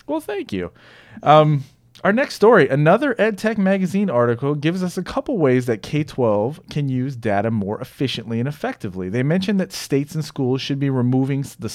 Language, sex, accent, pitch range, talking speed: English, male, American, 115-150 Hz, 180 wpm